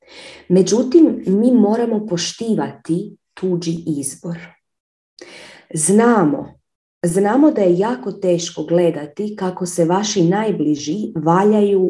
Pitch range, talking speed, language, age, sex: 175-250 Hz, 90 wpm, Croatian, 30-49, female